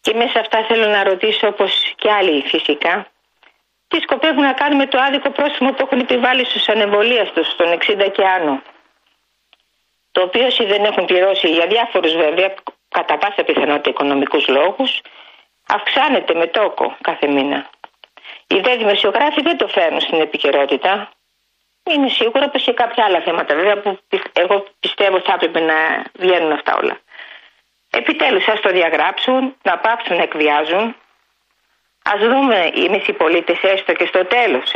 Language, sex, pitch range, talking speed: Greek, female, 180-245 Hz, 150 wpm